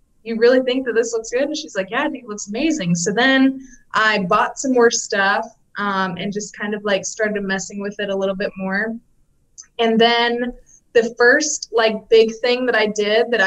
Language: English